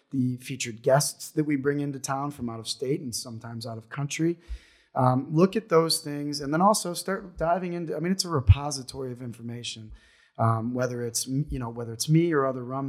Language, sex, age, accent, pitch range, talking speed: English, male, 20-39, American, 125-150 Hz, 215 wpm